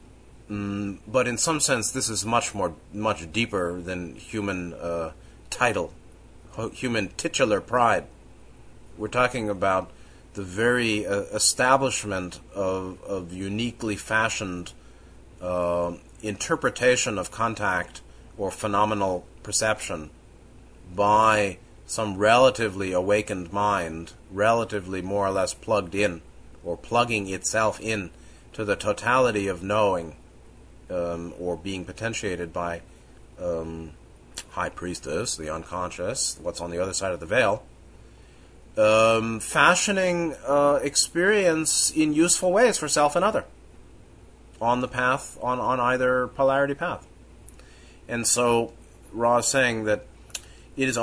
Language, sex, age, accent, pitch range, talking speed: English, male, 30-49, American, 95-125 Hz, 115 wpm